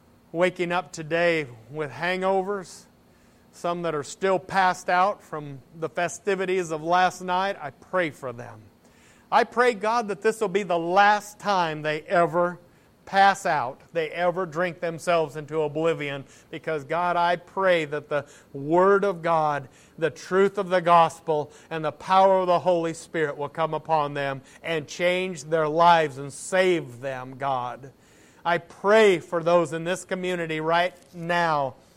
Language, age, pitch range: English, 50-69, 160-195 Hz